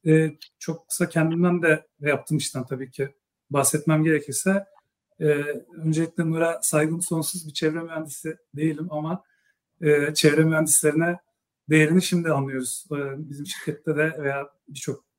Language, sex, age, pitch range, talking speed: Turkish, male, 40-59, 150-175 Hz, 130 wpm